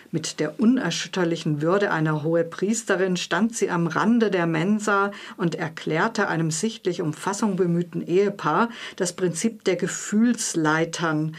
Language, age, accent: German, 50-69, German